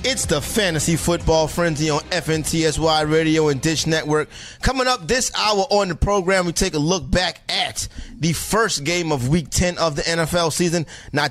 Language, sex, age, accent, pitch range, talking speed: English, male, 30-49, American, 145-185 Hz, 185 wpm